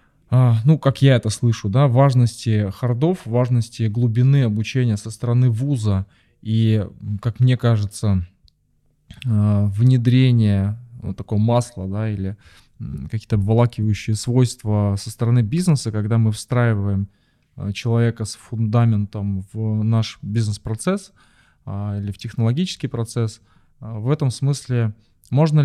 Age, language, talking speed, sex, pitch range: 20-39, Russian, 110 wpm, male, 105-125 Hz